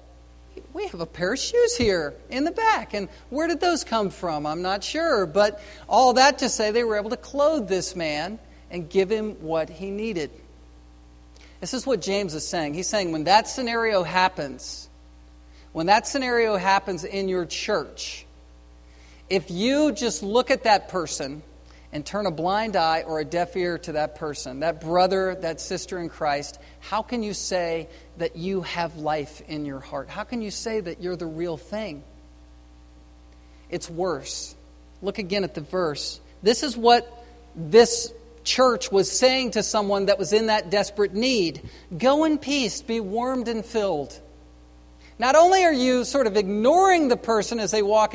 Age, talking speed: 50-69, 175 wpm